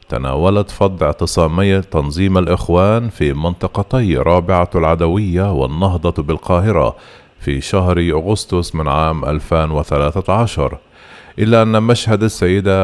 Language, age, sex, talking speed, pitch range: Arabic, 40-59, male, 100 wpm, 80-105 Hz